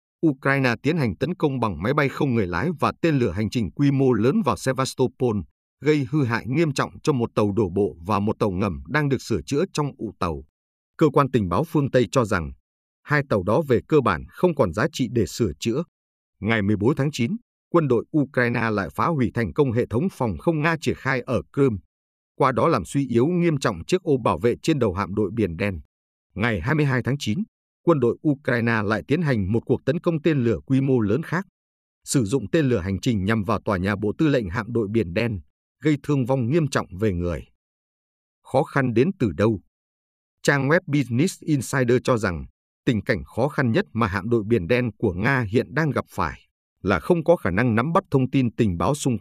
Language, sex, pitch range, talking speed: Vietnamese, male, 100-140 Hz, 225 wpm